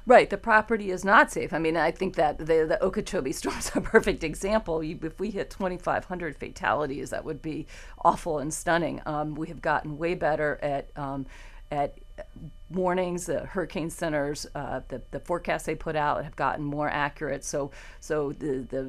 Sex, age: female, 40-59